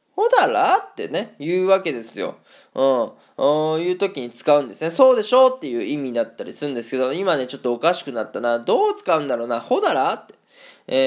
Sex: male